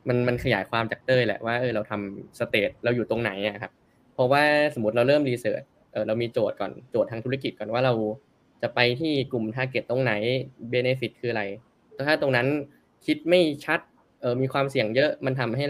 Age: 10-29